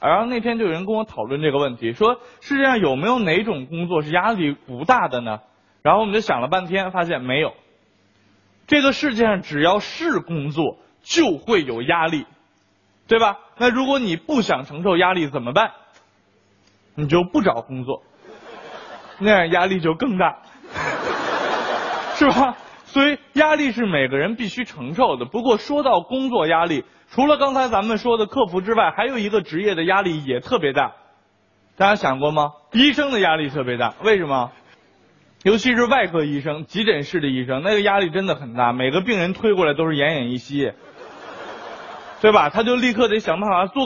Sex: male